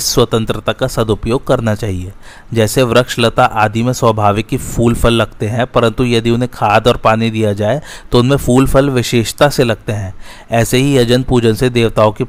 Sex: male